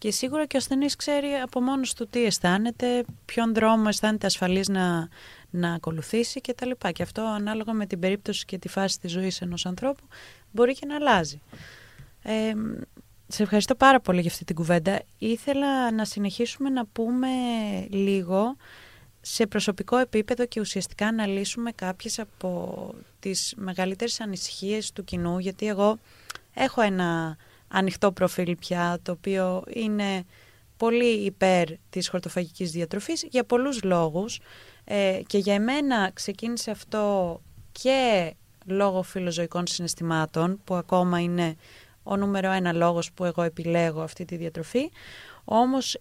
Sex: female